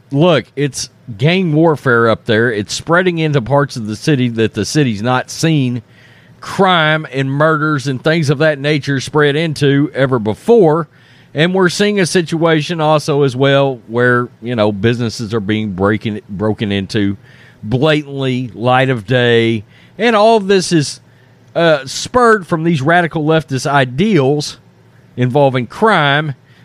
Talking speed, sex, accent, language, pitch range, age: 145 wpm, male, American, English, 130-180 Hz, 40-59